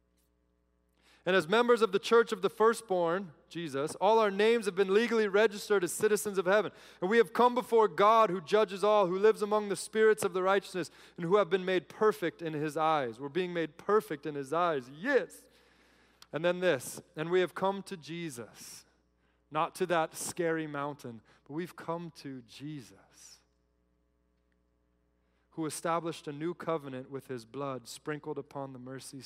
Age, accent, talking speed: 30-49, American, 175 wpm